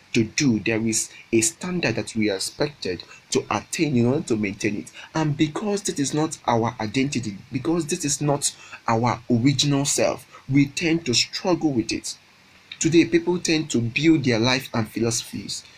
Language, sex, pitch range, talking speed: English, male, 110-140 Hz, 175 wpm